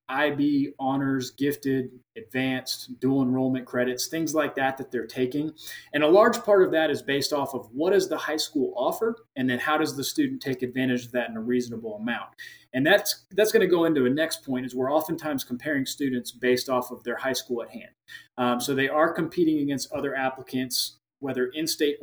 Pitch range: 125-155 Hz